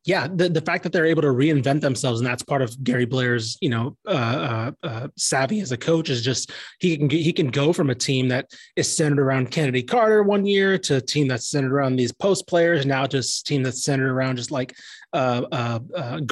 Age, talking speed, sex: 30-49, 230 wpm, male